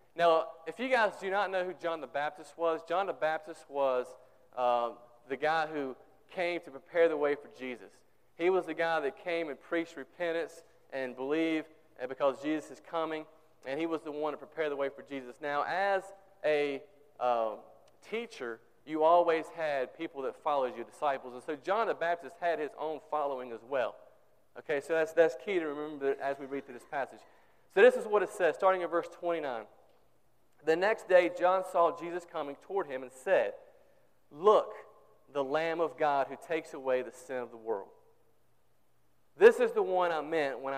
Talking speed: 195 wpm